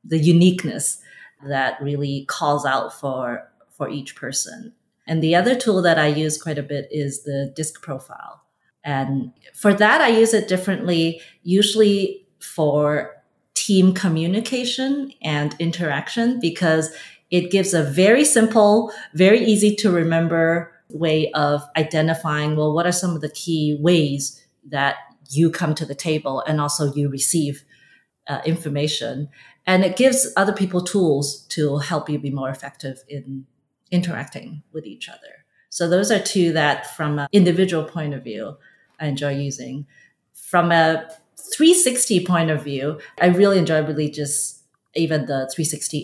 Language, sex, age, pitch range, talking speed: English, female, 30-49, 145-180 Hz, 150 wpm